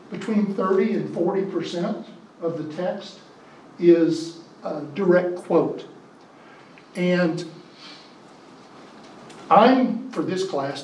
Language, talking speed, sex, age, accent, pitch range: English, 90 wpm, male, 50-69, American, 155-185 Hz